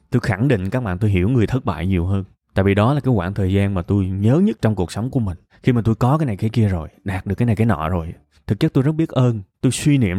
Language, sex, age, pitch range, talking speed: Vietnamese, male, 20-39, 105-140 Hz, 320 wpm